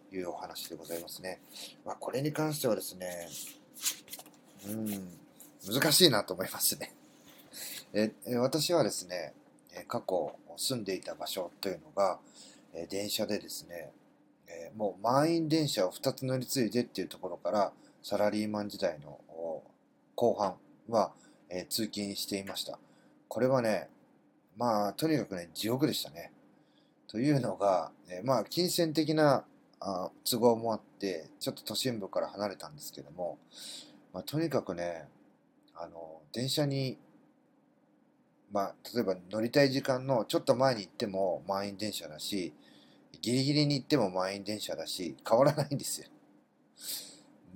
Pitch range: 100-135 Hz